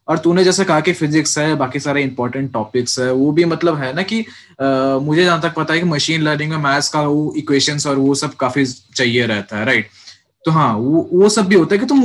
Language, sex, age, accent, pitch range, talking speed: Hindi, male, 20-39, native, 135-180 Hz, 235 wpm